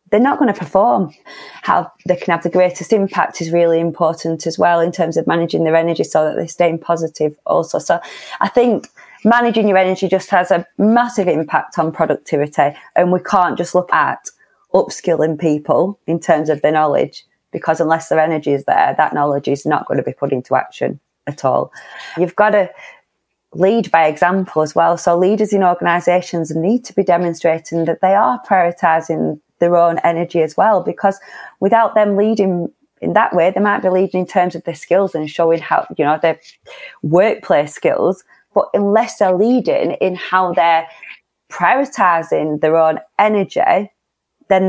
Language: English